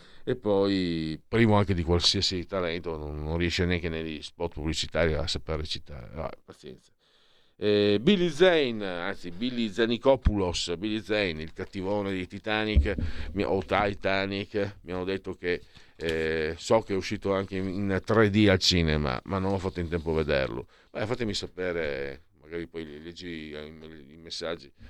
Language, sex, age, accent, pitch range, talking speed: Italian, male, 50-69, native, 90-115 Hz, 150 wpm